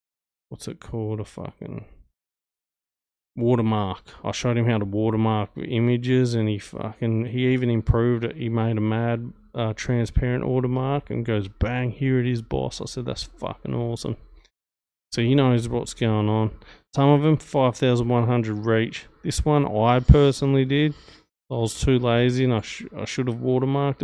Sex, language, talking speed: male, English, 165 wpm